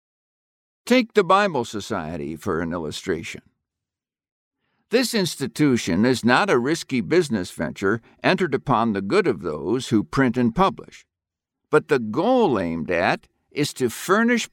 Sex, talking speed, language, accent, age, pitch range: male, 135 wpm, English, American, 60-79, 115-185 Hz